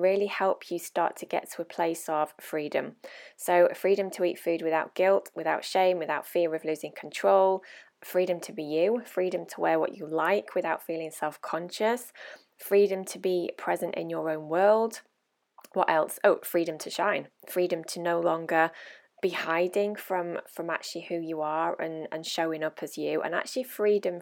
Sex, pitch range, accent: female, 160-190 Hz, British